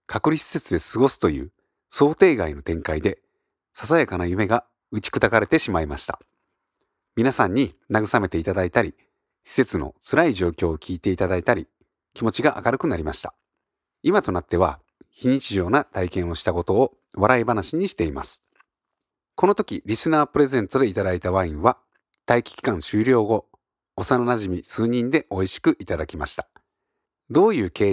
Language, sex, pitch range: Japanese, male, 90-150 Hz